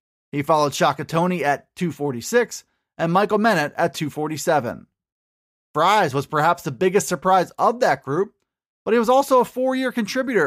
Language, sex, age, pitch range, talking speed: English, male, 30-49, 155-215 Hz, 155 wpm